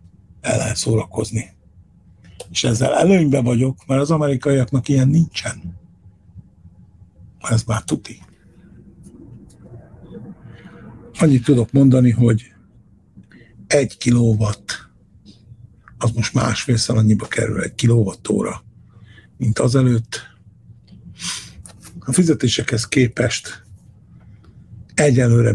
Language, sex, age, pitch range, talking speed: Hungarian, male, 60-79, 95-125 Hz, 80 wpm